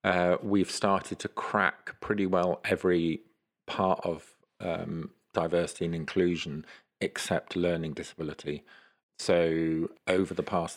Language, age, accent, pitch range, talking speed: English, 50-69, British, 80-90 Hz, 115 wpm